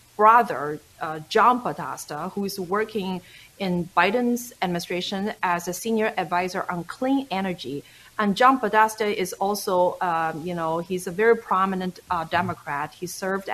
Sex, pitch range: female, 180-220 Hz